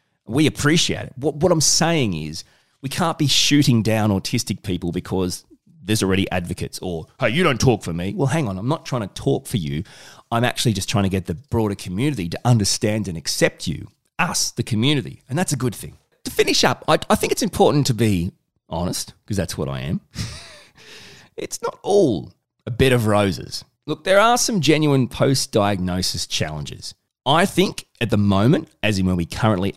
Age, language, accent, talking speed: 30-49, English, Australian, 200 wpm